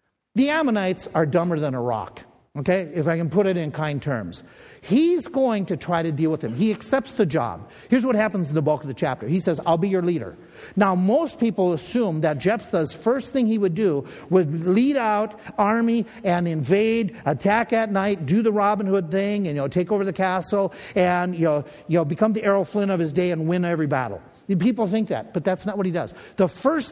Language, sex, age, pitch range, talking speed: English, male, 50-69, 170-220 Hz, 225 wpm